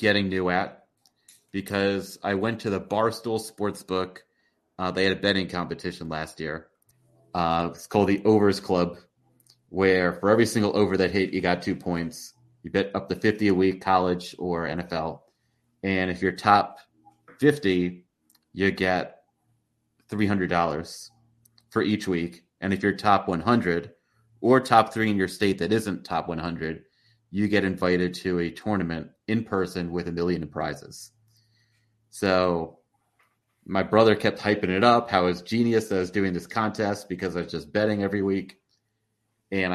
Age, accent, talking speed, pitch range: 30-49, American, 160 wpm, 90-110 Hz